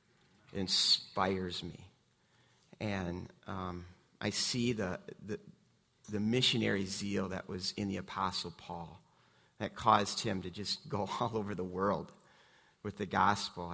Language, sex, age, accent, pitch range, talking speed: English, male, 40-59, American, 90-105 Hz, 135 wpm